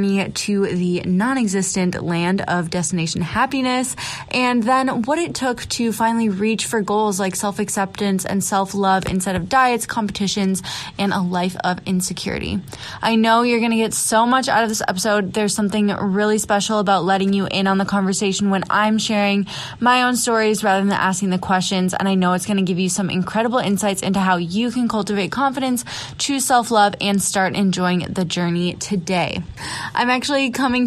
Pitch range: 185-220 Hz